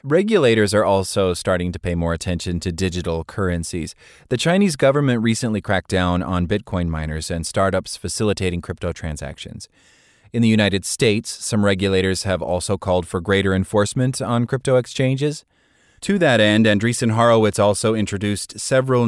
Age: 30-49